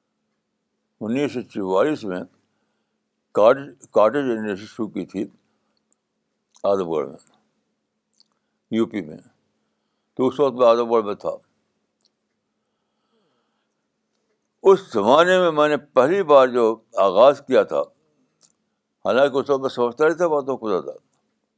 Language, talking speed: Urdu, 105 wpm